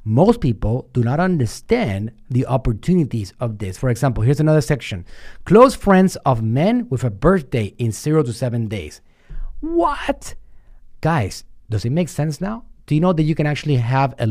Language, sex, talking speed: English, male, 175 wpm